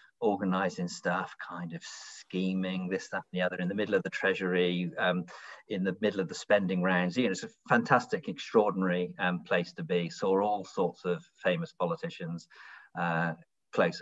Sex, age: male, 40-59